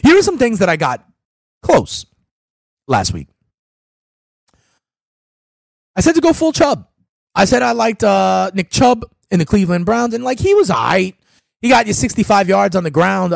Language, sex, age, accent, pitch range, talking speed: English, male, 30-49, American, 155-245 Hz, 185 wpm